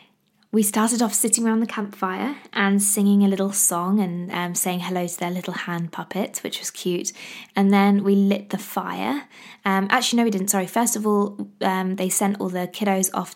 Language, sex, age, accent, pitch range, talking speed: English, female, 20-39, British, 185-220 Hz, 205 wpm